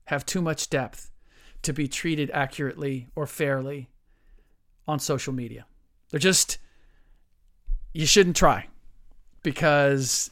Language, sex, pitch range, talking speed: English, male, 135-165 Hz, 110 wpm